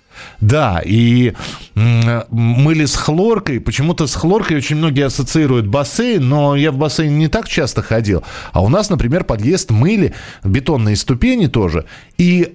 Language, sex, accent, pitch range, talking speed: Russian, male, native, 110-140 Hz, 150 wpm